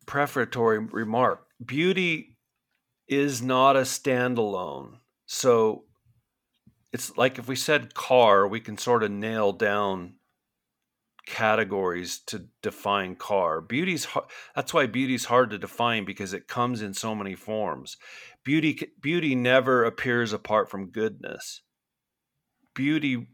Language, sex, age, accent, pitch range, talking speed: English, male, 50-69, American, 105-125 Hz, 120 wpm